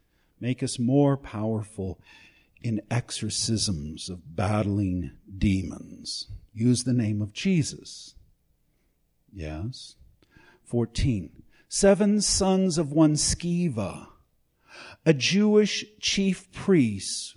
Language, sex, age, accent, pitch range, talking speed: English, male, 50-69, American, 105-145 Hz, 85 wpm